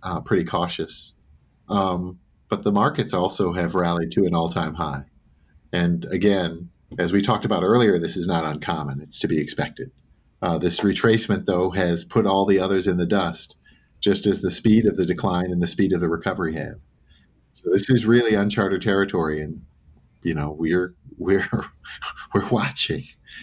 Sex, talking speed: male, 175 wpm